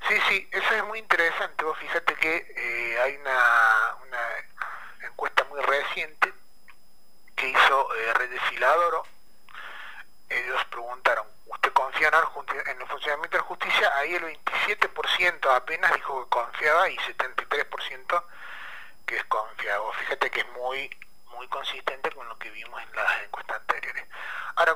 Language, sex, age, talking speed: Spanish, male, 30-49, 140 wpm